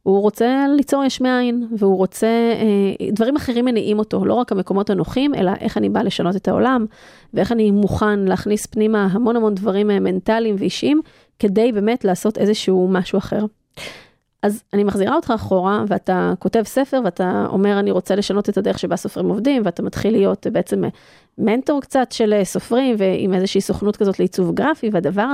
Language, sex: Hebrew, female